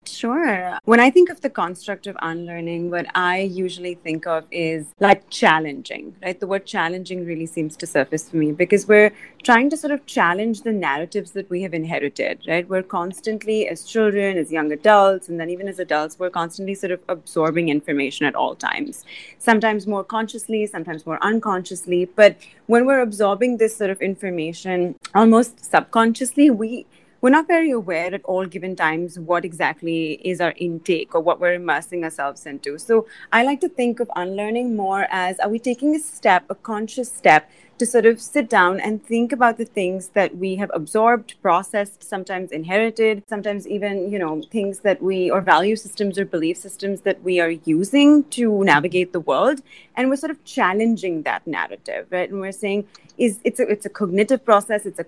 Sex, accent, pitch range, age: female, Indian, 175-225 Hz, 30-49